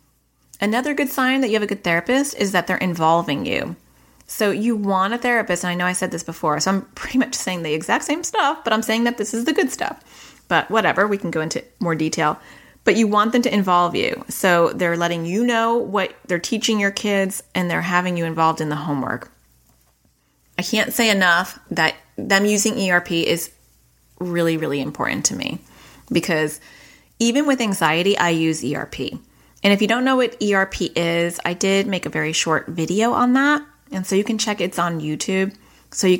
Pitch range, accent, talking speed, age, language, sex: 165-220 Hz, American, 205 wpm, 30-49, English, female